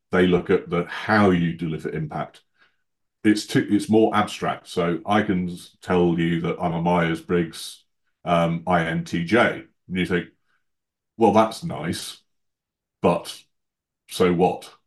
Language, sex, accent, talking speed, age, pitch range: English, male, British, 135 wpm, 40-59, 85-100 Hz